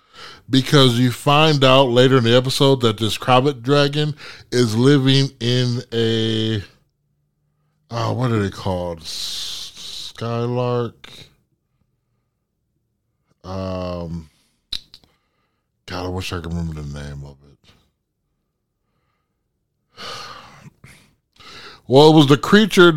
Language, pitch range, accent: English, 100-135 Hz, American